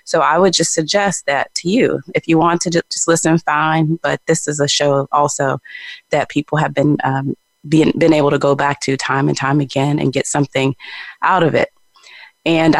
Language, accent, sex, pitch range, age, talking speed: English, American, female, 150-185 Hz, 20-39, 205 wpm